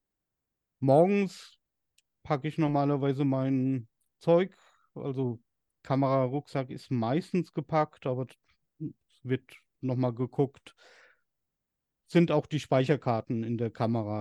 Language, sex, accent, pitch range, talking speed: German, male, German, 125-145 Hz, 95 wpm